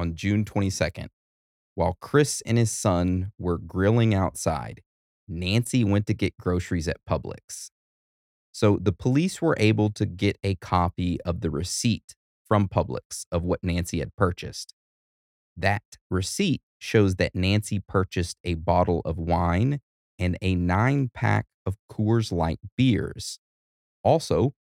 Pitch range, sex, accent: 85-110 Hz, male, American